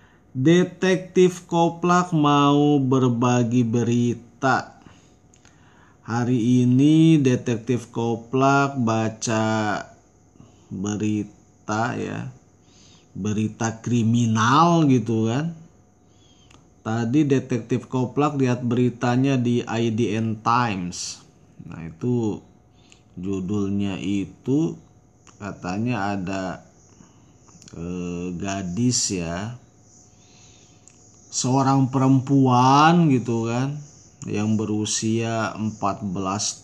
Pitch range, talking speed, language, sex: 105-140 Hz, 65 wpm, Indonesian, male